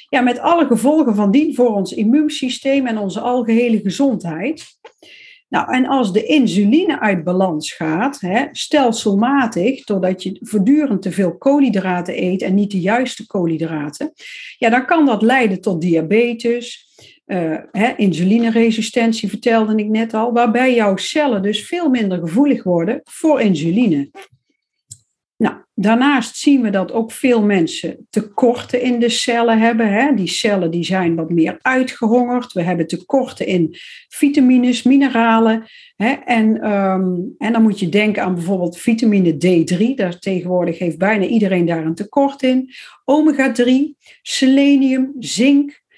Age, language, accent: 50-69, Dutch, Dutch